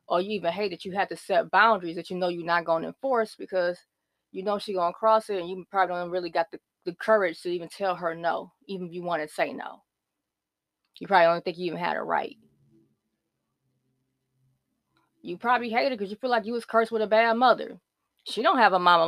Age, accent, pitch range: 20-39, American, 170-215 Hz